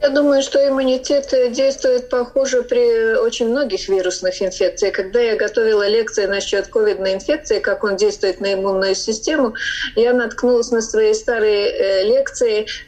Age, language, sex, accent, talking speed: 30-49, Russian, female, native, 135 wpm